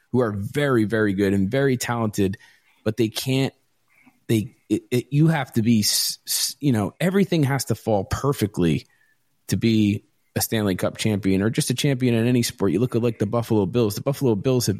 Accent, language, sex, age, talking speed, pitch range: American, English, male, 30-49, 200 wpm, 100-130 Hz